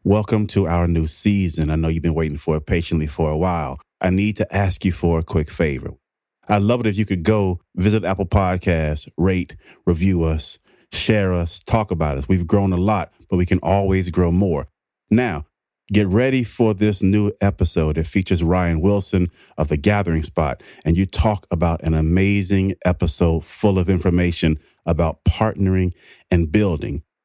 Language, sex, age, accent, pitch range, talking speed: English, male, 30-49, American, 85-100 Hz, 180 wpm